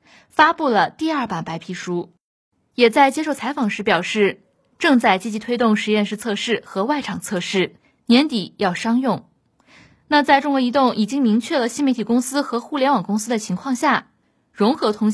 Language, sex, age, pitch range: Chinese, female, 20-39, 200-280 Hz